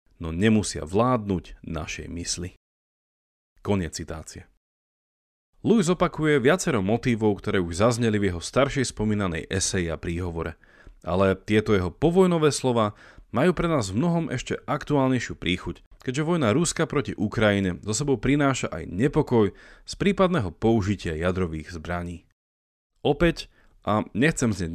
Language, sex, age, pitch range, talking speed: Slovak, male, 40-59, 85-130 Hz, 130 wpm